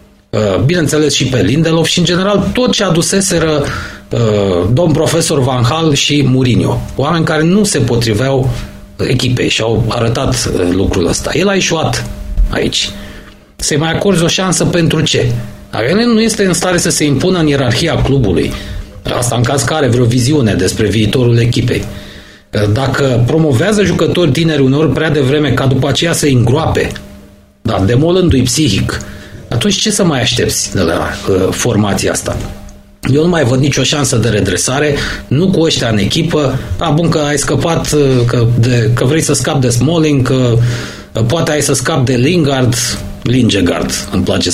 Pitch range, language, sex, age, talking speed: 115-155 Hz, Romanian, male, 40-59, 165 wpm